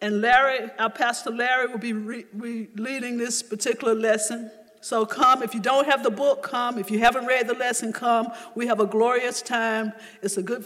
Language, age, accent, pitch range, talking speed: English, 50-69, American, 205-240 Hz, 210 wpm